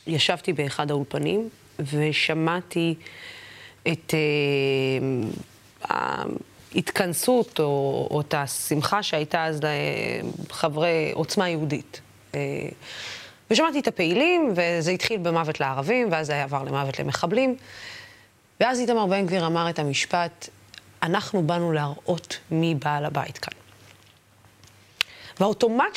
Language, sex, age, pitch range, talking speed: Hebrew, female, 20-39, 140-190 Hz, 100 wpm